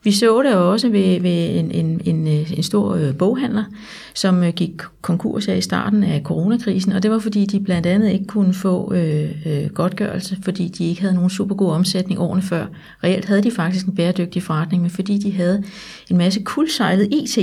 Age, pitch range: 30-49, 175-205 Hz